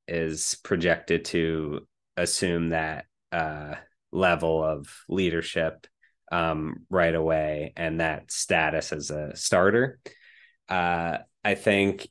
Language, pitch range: English, 80-95 Hz